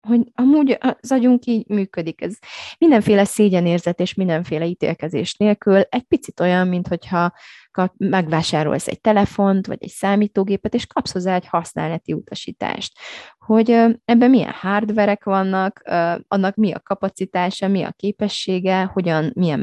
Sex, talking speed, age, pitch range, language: female, 130 wpm, 20-39, 165-210 Hz, Hungarian